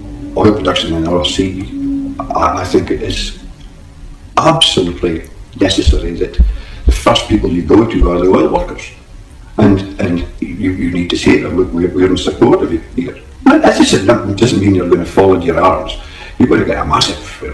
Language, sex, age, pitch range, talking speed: English, male, 60-79, 90-140 Hz, 180 wpm